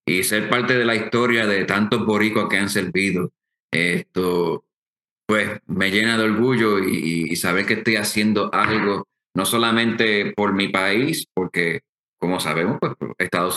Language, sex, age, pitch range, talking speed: English, male, 30-49, 95-115 Hz, 155 wpm